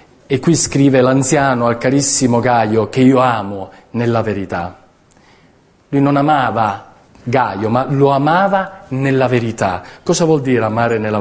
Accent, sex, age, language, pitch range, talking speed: native, male, 40-59, Italian, 130-170 Hz, 140 wpm